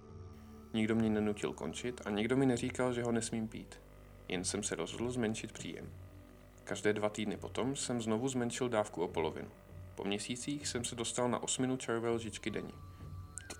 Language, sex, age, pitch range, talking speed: Czech, male, 40-59, 95-120 Hz, 170 wpm